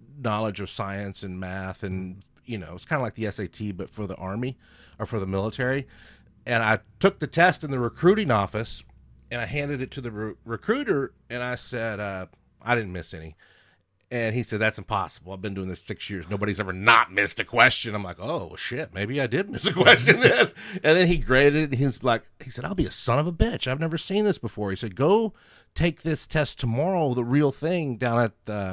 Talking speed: 230 wpm